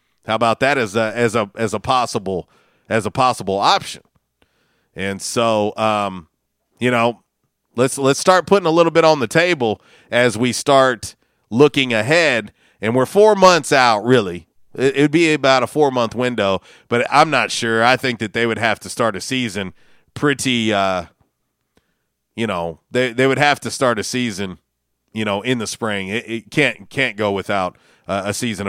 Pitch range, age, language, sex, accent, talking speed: 110-145 Hz, 40-59, English, male, American, 185 wpm